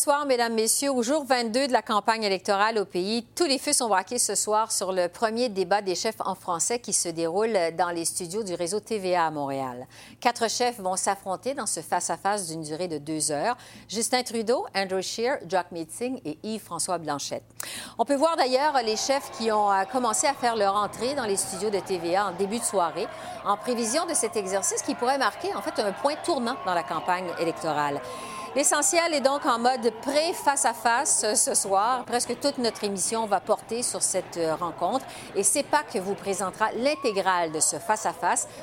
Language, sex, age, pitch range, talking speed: French, female, 50-69, 180-255 Hz, 190 wpm